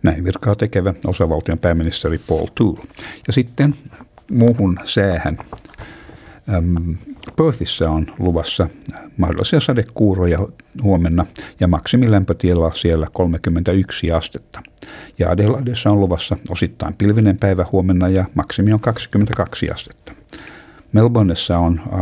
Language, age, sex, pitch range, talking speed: Finnish, 60-79, male, 85-105 Hz, 105 wpm